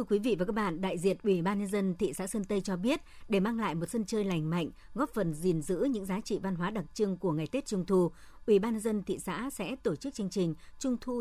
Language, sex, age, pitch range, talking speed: Vietnamese, male, 60-79, 175-220 Hz, 295 wpm